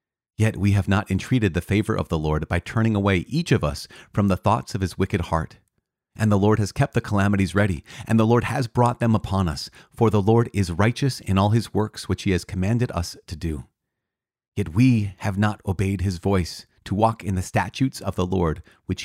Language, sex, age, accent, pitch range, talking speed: English, male, 40-59, American, 90-110 Hz, 225 wpm